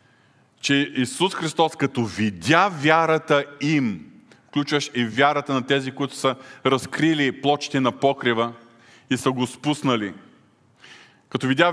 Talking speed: 125 wpm